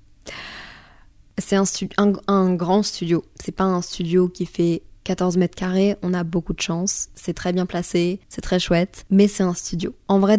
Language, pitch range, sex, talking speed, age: French, 175-195 Hz, female, 185 wpm, 20-39